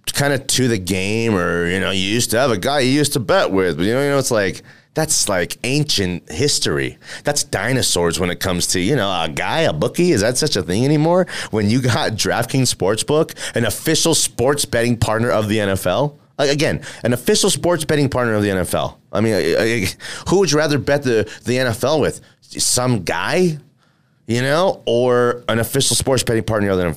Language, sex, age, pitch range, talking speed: English, male, 30-49, 105-145 Hz, 205 wpm